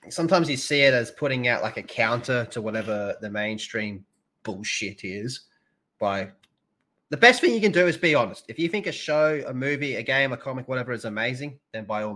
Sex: male